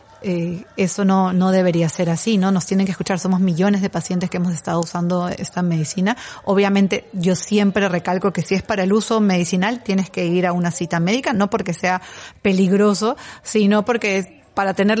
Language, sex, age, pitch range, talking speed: Spanish, female, 30-49, 175-205 Hz, 190 wpm